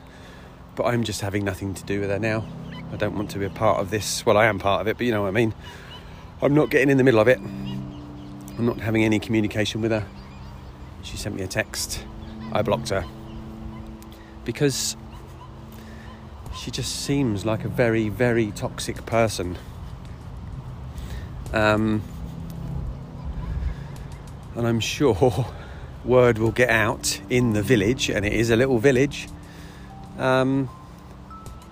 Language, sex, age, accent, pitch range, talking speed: English, male, 40-59, British, 100-130 Hz, 155 wpm